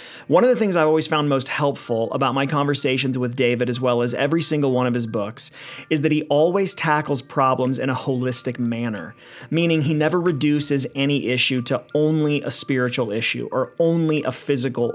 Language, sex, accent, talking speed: English, male, American, 195 wpm